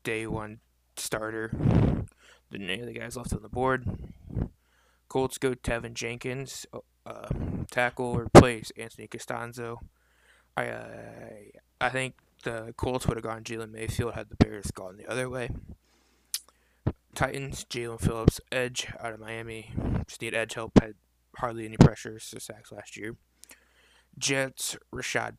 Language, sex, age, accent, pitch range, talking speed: English, male, 20-39, American, 100-125 Hz, 145 wpm